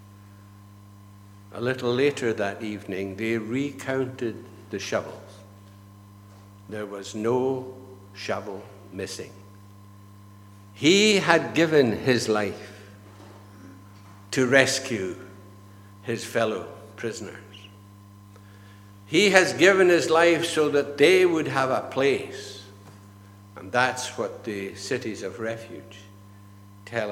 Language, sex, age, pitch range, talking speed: English, male, 60-79, 100-135 Hz, 95 wpm